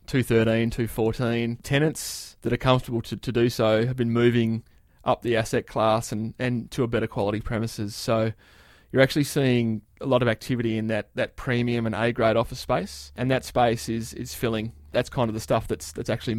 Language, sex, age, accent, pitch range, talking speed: English, male, 20-39, Australian, 110-125 Hz, 200 wpm